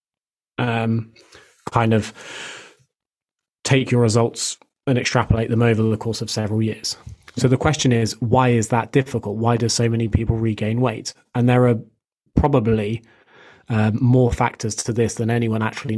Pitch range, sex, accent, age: 110-125 Hz, male, British, 20-39